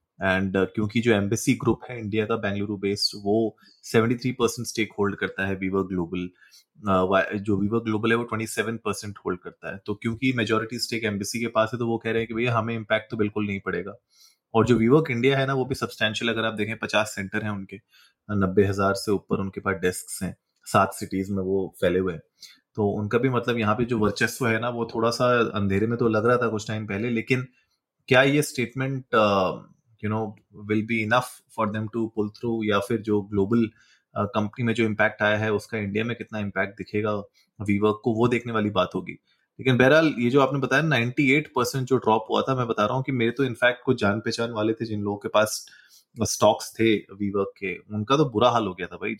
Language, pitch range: Hindi, 100-120 Hz